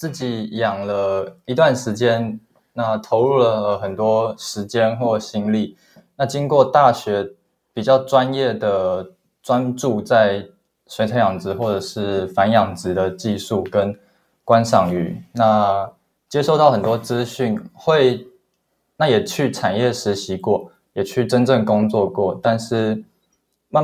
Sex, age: male, 20-39